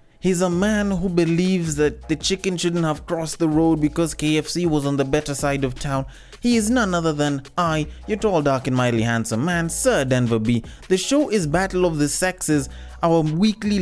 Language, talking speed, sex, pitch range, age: English, 205 wpm, male, 125-175 Hz, 20-39